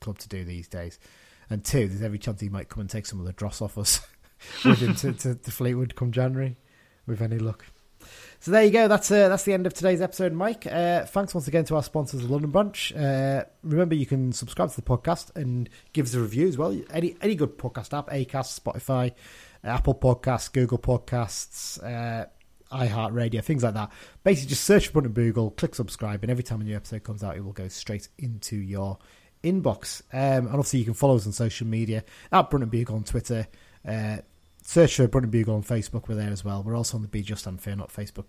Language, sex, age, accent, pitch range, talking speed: English, male, 30-49, British, 110-145 Hz, 225 wpm